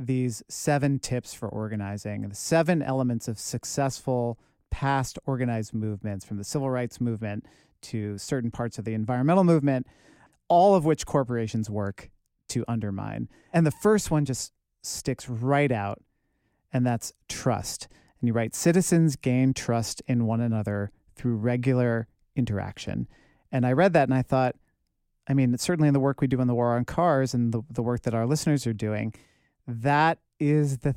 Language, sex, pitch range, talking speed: English, male, 110-140 Hz, 170 wpm